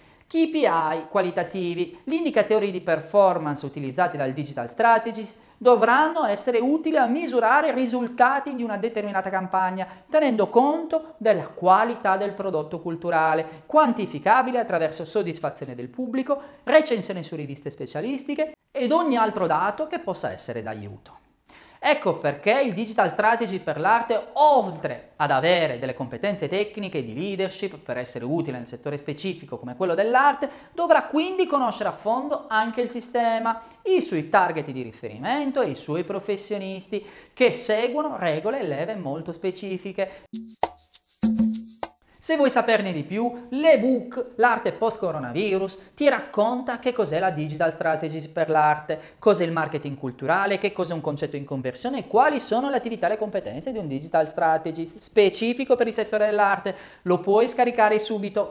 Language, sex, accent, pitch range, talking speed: Italian, male, native, 160-240 Hz, 145 wpm